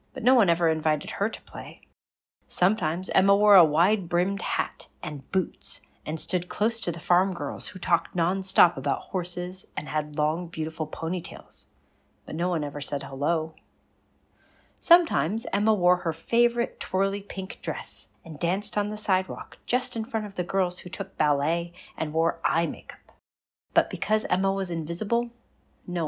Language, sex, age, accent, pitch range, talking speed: English, female, 40-59, American, 155-200 Hz, 165 wpm